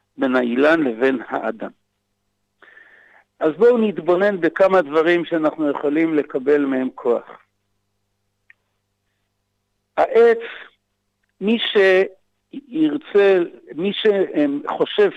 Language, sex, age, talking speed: Hebrew, male, 60-79, 75 wpm